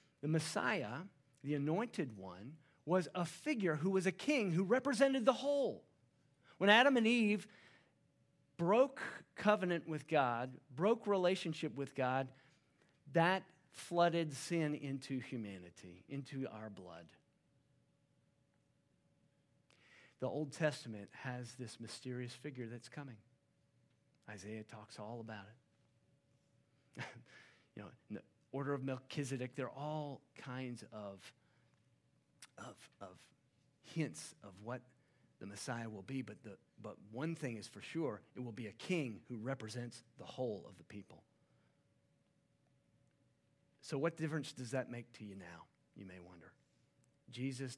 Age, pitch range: 40-59, 115-155 Hz